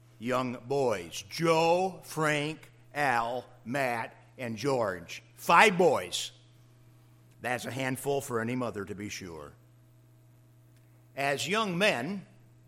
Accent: American